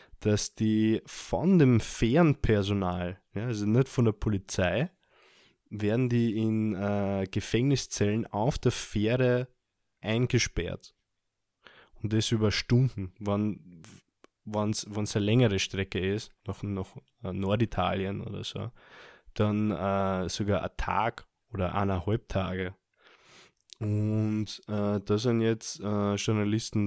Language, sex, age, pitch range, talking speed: German, male, 20-39, 100-115 Hz, 110 wpm